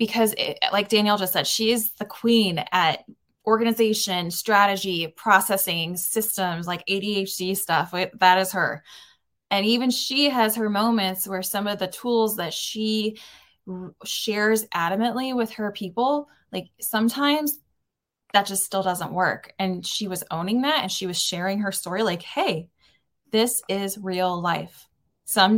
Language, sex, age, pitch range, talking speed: English, female, 20-39, 185-225 Hz, 150 wpm